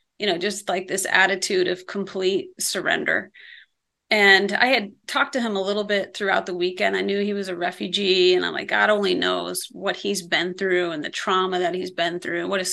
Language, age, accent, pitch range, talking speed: English, 30-49, American, 185-215 Hz, 220 wpm